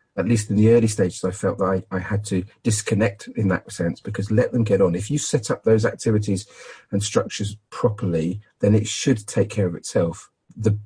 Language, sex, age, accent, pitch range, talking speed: English, male, 40-59, British, 95-115 Hz, 215 wpm